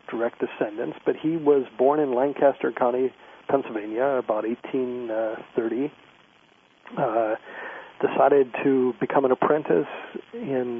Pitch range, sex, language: 120-140 Hz, male, English